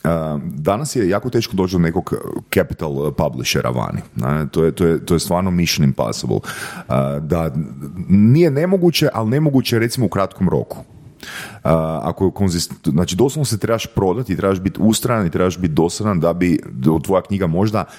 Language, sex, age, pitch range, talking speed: Croatian, male, 30-49, 85-125 Hz, 155 wpm